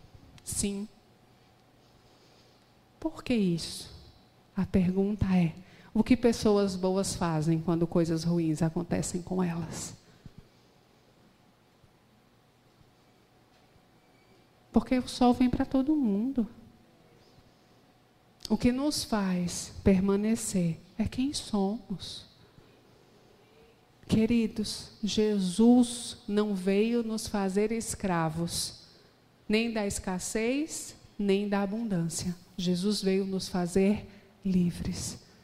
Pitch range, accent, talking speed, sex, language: 180-220 Hz, Brazilian, 85 wpm, female, Portuguese